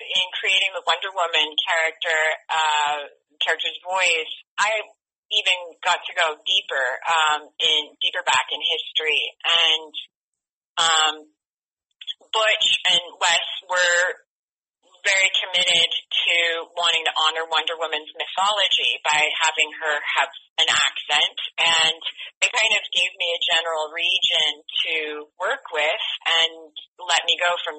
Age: 30-49